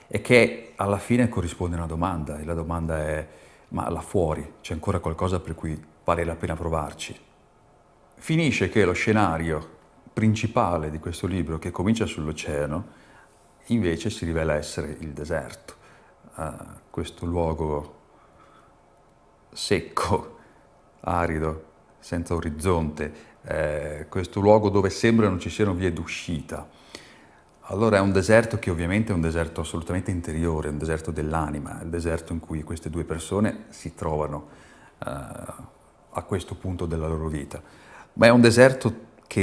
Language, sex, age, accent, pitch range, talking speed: Italian, male, 40-59, native, 80-95 Hz, 145 wpm